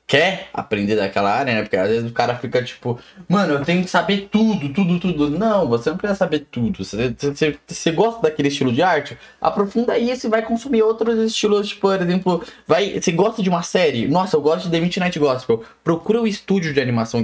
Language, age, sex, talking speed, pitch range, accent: Portuguese, 10-29, male, 210 wpm, 125-195 Hz, Brazilian